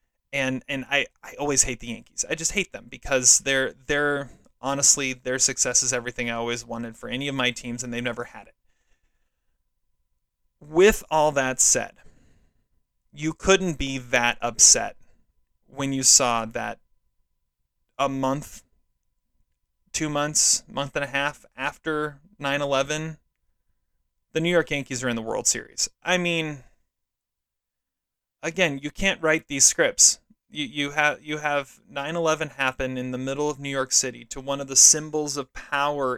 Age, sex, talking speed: 30-49, male, 155 wpm